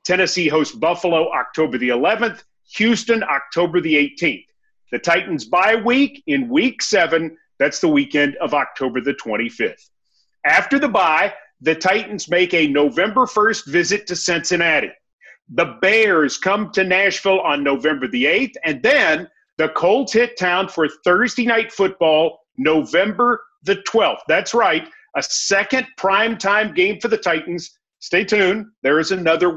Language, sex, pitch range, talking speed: English, male, 165-235 Hz, 145 wpm